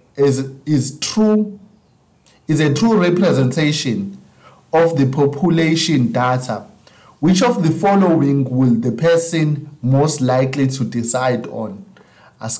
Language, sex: English, male